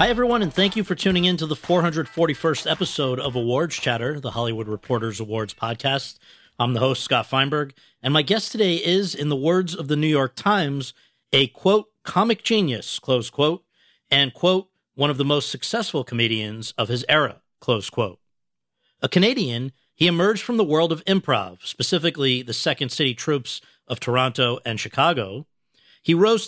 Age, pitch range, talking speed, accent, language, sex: 50-69, 130-185 Hz, 175 wpm, American, English, male